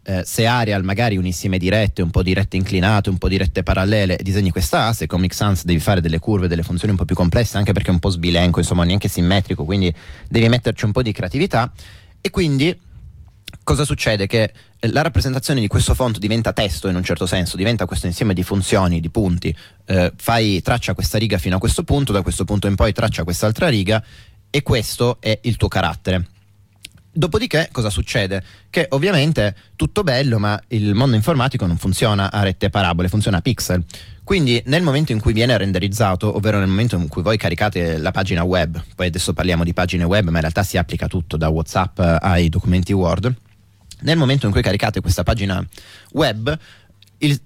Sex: male